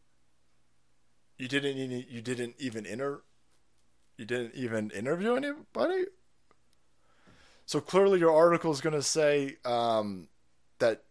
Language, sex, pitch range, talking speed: English, male, 110-160 Hz, 120 wpm